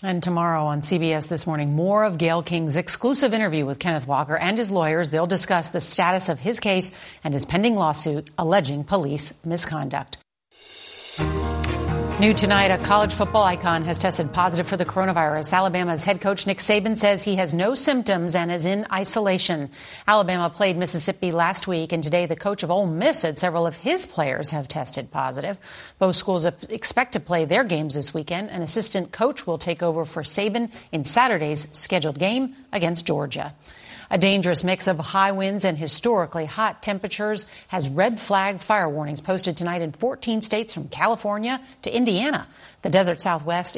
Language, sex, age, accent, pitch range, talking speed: English, female, 50-69, American, 165-205 Hz, 175 wpm